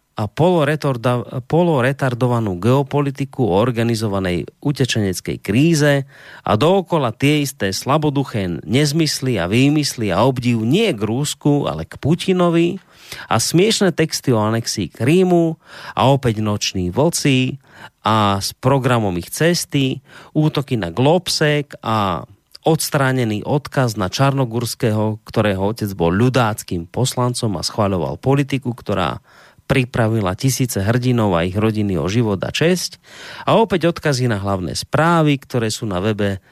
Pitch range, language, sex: 105-150 Hz, Slovak, male